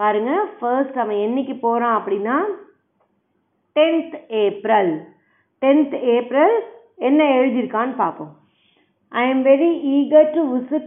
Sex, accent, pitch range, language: female, native, 220-280 Hz, Tamil